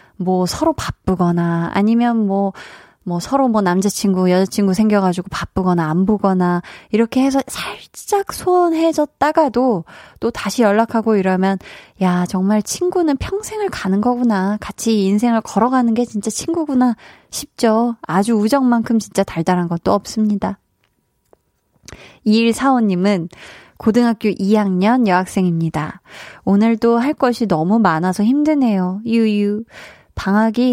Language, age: Korean, 20-39